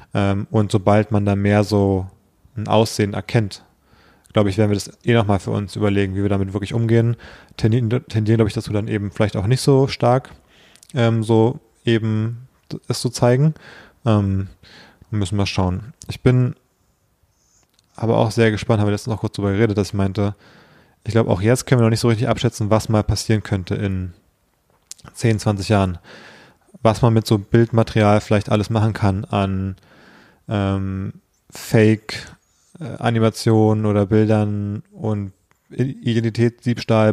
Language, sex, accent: German, male, German